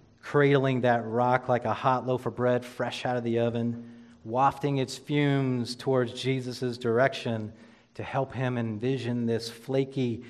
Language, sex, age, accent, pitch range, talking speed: English, male, 40-59, American, 115-135 Hz, 150 wpm